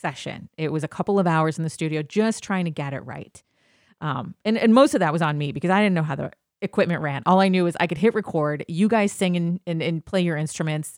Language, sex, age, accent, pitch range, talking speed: English, female, 30-49, American, 155-190 Hz, 275 wpm